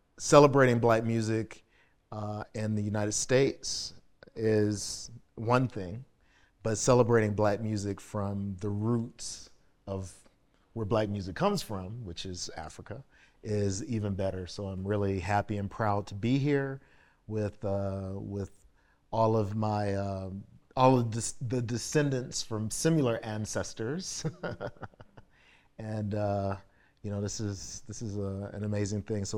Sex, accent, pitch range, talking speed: male, American, 100-115 Hz, 135 wpm